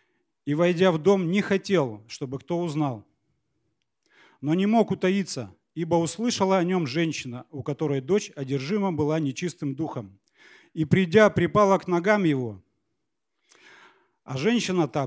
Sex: male